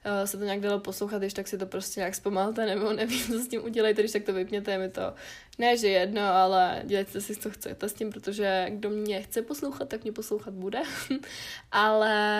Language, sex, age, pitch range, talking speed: Czech, female, 20-39, 200-225 Hz, 220 wpm